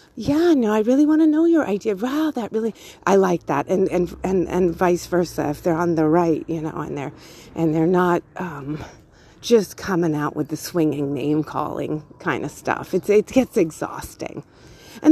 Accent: American